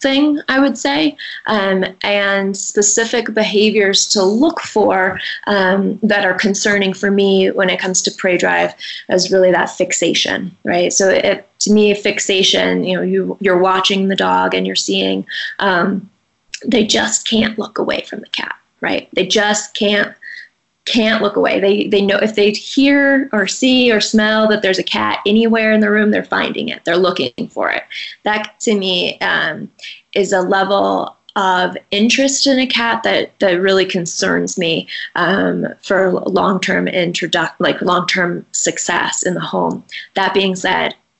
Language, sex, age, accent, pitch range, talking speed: English, female, 20-39, American, 185-215 Hz, 165 wpm